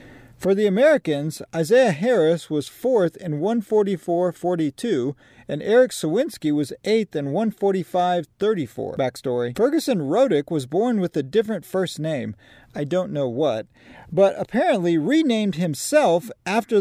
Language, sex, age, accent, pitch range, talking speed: English, male, 40-59, American, 145-205 Hz, 130 wpm